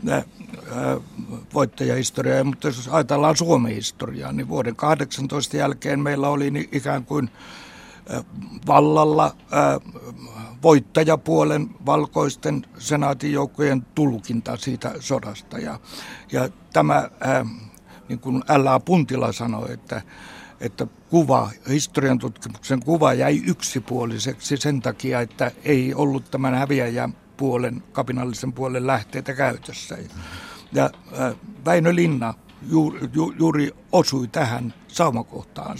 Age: 60-79